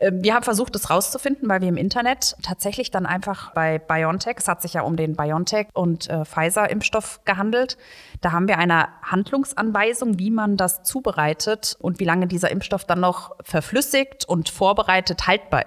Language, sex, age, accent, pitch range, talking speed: German, female, 30-49, German, 165-205 Hz, 175 wpm